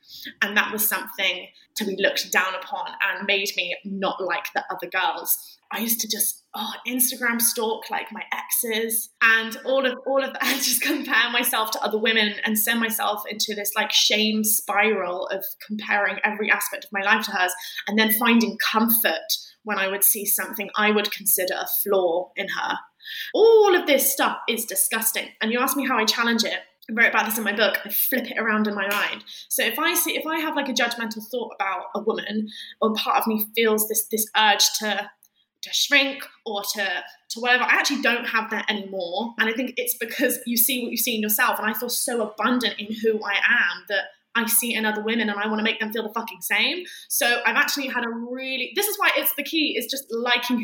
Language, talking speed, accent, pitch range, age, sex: English, 225 wpm, British, 210-260 Hz, 20-39, female